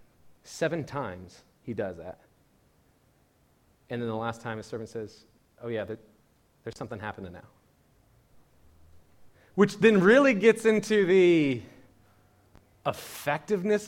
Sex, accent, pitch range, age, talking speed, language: male, American, 110-175 Hz, 30-49, 110 wpm, English